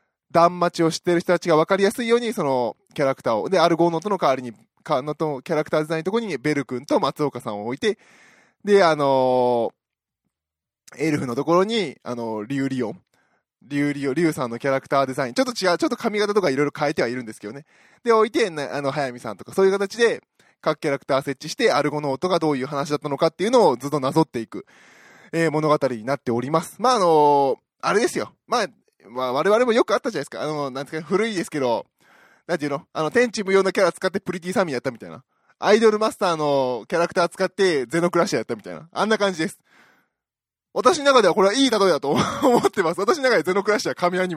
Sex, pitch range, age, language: male, 140-195 Hz, 20-39, Japanese